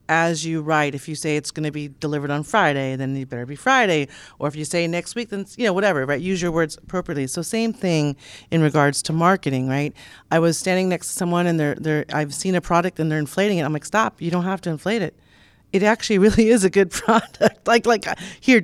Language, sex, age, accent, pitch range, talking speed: English, female, 40-59, American, 150-180 Hz, 250 wpm